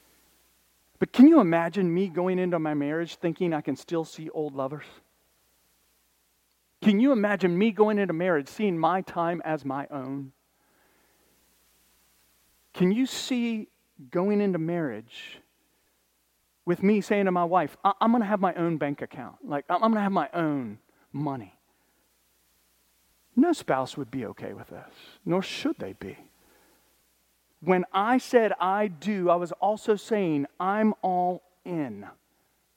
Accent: American